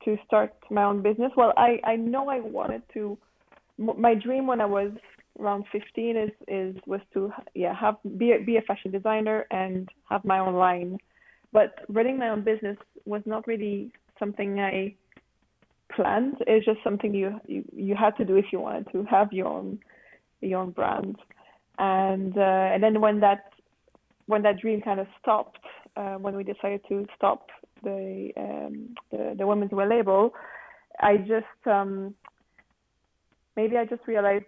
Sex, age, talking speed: female, 20-39, 170 wpm